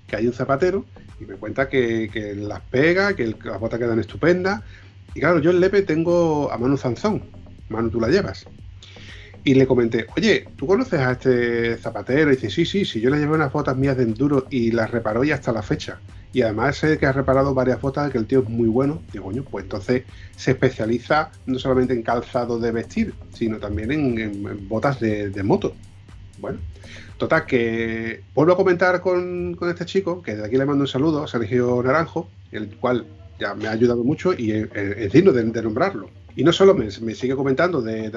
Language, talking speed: Spanish, 215 wpm